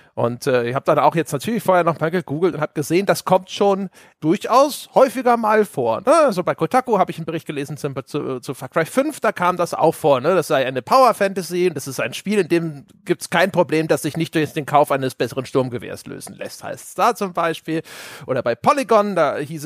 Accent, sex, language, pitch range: German, male, German, 150-200 Hz